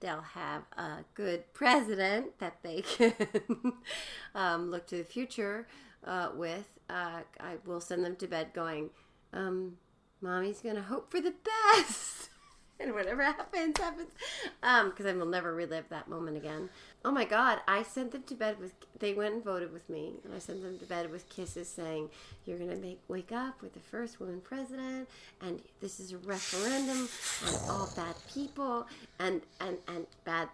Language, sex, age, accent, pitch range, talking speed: English, female, 40-59, American, 170-230 Hz, 180 wpm